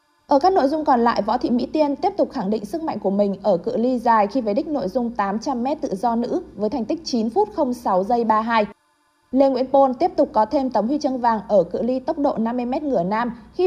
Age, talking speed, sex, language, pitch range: 20-39, 260 wpm, female, Vietnamese, 215-285 Hz